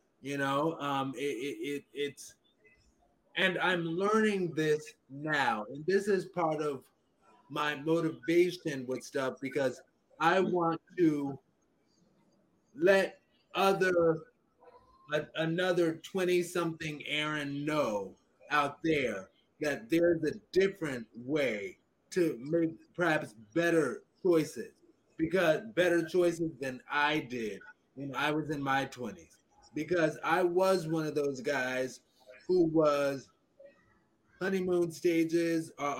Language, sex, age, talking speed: English, male, 30-49, 115 wpm